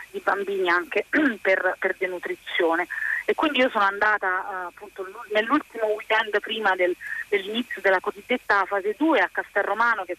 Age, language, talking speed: 30-49, Italian, 140 wpm